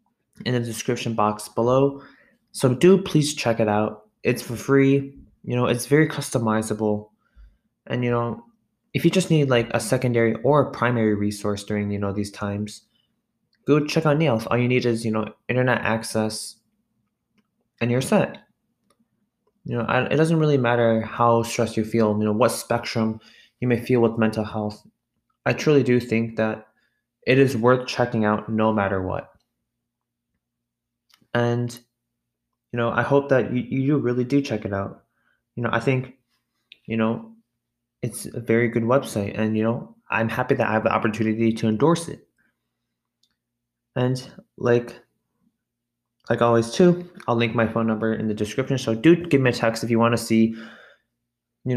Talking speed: 170 wpm